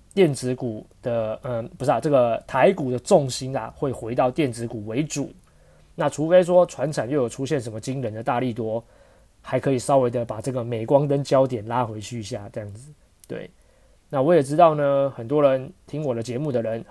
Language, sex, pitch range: Chinese, male, 115-145 Hz